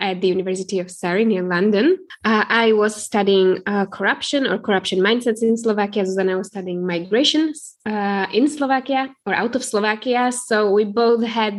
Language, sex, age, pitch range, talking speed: Czech, female, 10-29, 195-230 Hz, 180 wpm